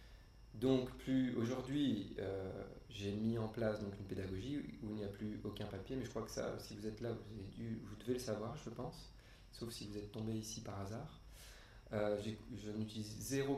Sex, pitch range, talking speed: male, 100-120 Hz, 210 wpm